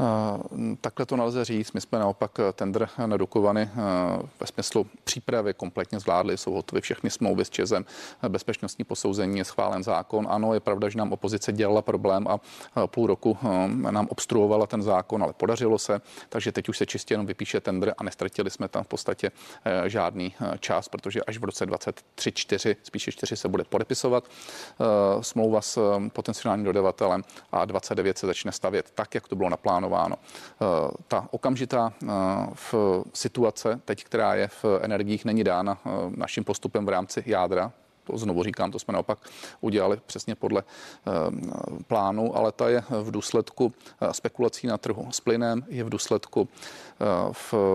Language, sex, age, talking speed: Czech, male, 40-59, 155 wpm